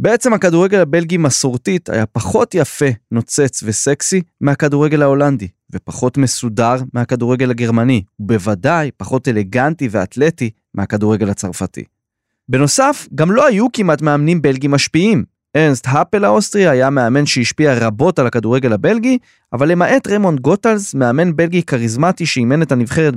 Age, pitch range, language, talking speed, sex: 20-39, 115-170 Hz, Hebrew, 125 wpm, male